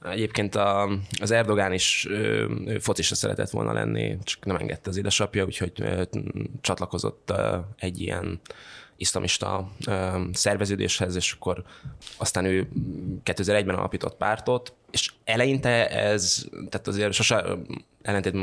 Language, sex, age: Hungarian, male, 20-39